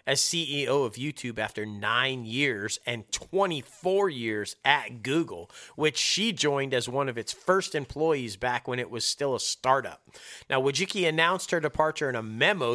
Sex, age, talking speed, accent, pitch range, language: male, 40-59, 170 wpm, American, 125-160 Hz, English